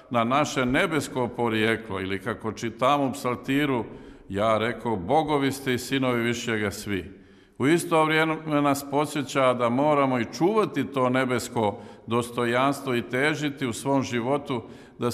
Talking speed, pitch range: 140 wpm, 115-135 Hz